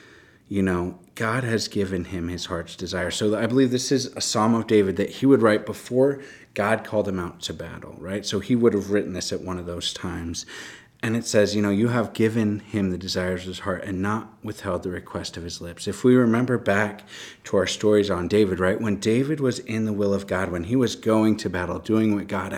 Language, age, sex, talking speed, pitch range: English, 30-49, male, 240 wpm, 95-115 Hz